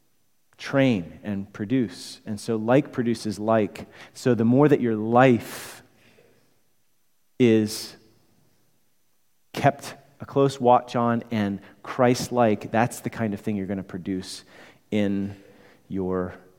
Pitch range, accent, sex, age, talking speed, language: 95-125 Hz, American, male, 30-49, 120 wpm, English